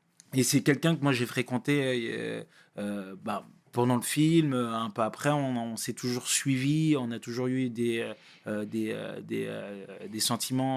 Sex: male